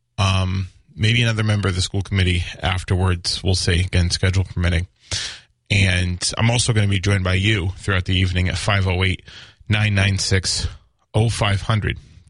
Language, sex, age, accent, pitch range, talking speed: English, male, 30-49, American, 90-110 Hz, 140 wpm